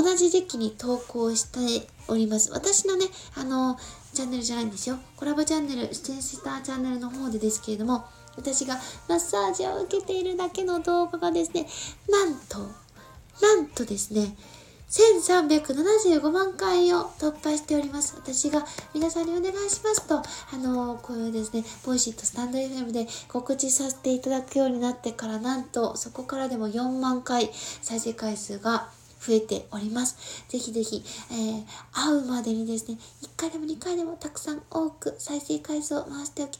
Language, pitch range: Japanese, 230-310 Hz